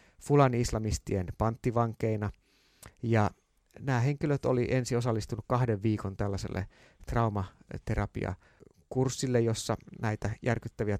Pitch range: 100-125 Hz